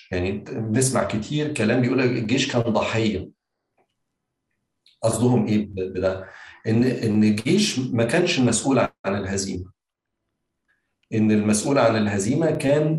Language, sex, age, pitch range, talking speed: Arabic, male, 50-69, 110-140 Hz, 110 wpm